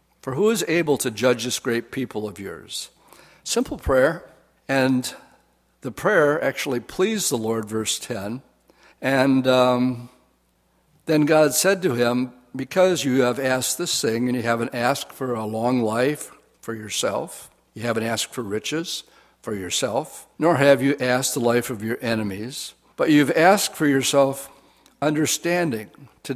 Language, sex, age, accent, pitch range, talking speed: English, male, 60-79, American, 120-150 Hz, 155 wpm